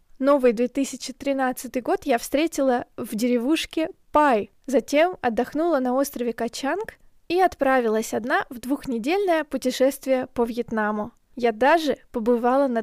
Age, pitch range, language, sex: 20-39, 235-275 Hz, Russian, female